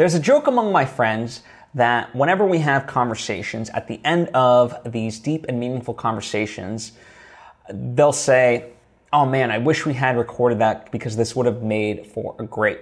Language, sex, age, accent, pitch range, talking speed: English, male, 30-49, American, 115-150 Hz, 180 wpm